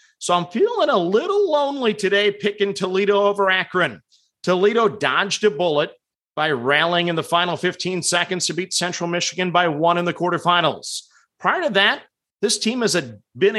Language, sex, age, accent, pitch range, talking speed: English, male, 40-59, American, 170-220 Hz, 170 wpm